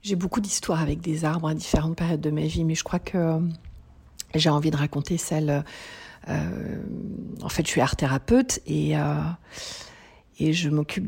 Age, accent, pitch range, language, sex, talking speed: 50-69, French, 155-190 Hz, French, female, 180 wpm